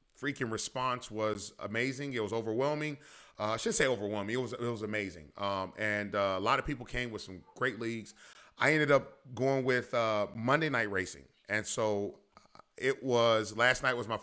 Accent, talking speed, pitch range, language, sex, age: American, 195 wpm, 105-135 Hz, English, male, 30-49